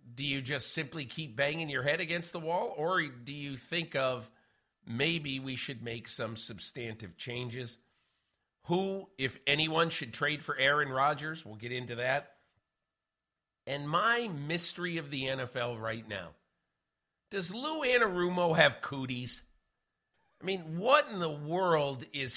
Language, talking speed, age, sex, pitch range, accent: English, 150 wpm, 50-69, male, 125-160 Hz, American